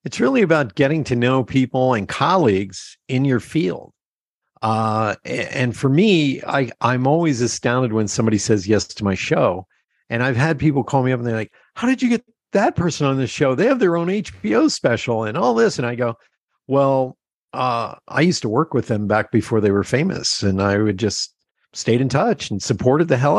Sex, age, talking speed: male, 50-69, 210 wpm